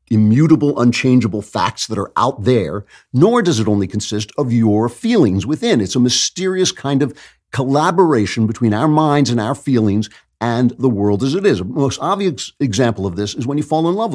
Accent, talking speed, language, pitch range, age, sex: American, 195 wpm, English, 100-135 Hz, 50-69, male